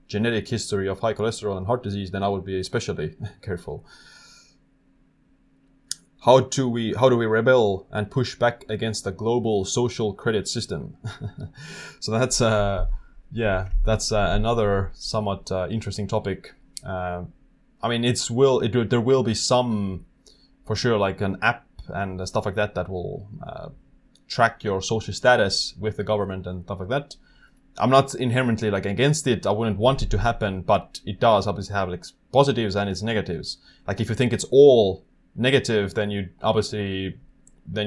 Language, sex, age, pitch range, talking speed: English, male, 20-39, 100-120 Hz, 170 wpm